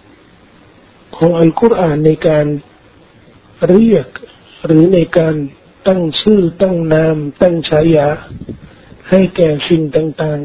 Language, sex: Thai, male